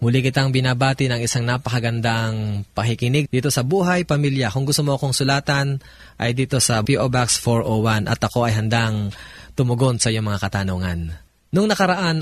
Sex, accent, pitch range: male, native, 115-145 Hz